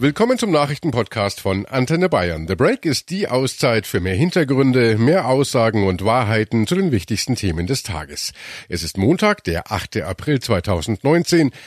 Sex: male